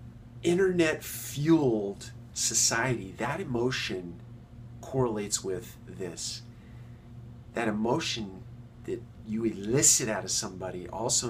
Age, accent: 40-59, American